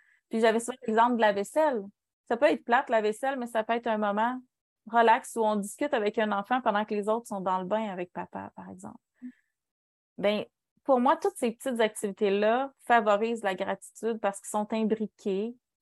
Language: French